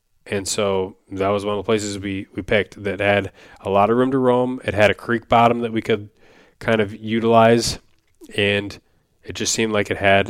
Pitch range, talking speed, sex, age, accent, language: 100-110 Hz, 215 wpm, male, 20-39, American, English